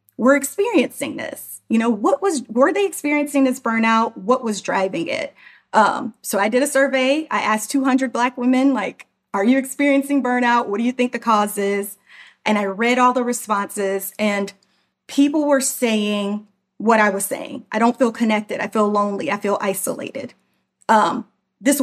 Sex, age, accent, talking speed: female, 30-49, American, 180 wpm